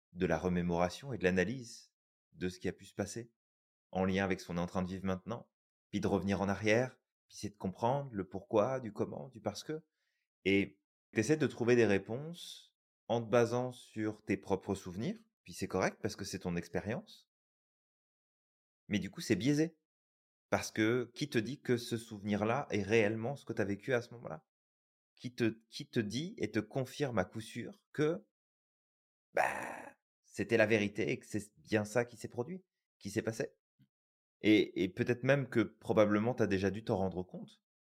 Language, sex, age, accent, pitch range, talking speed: French, male, 30-49, French, 95-120 Hz, 195 wpm